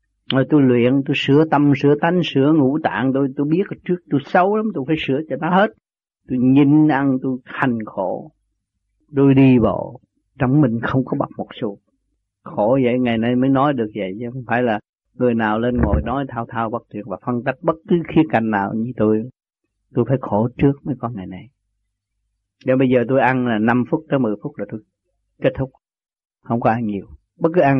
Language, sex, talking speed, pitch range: Vietnamese, male, 215 wpm, 120-165 Hz